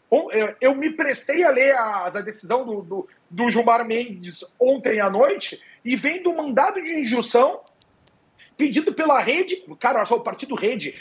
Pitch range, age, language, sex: 235-295 Hz, 40-59, Portuguese, male